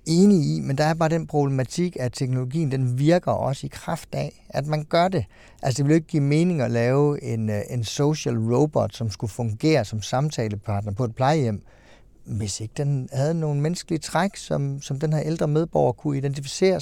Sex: male